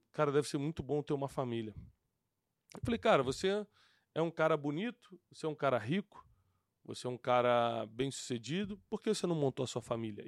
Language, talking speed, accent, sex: Portuguese, 200 wpm, Brazilian, male